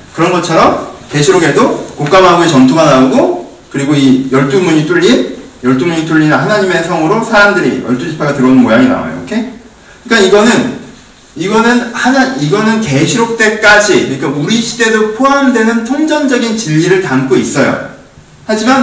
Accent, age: native, 40-59